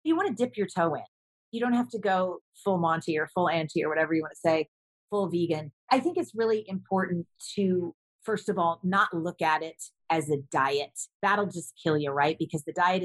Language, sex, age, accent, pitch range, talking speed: English, female, 30-49, American, 170-215 Hz, 225 wpm